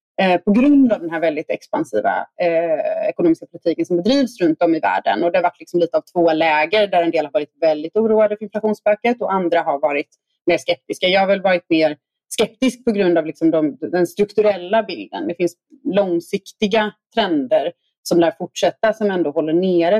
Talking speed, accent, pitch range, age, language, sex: 195 wpm, native, 170-225 Hz, 30-49, Swedish, female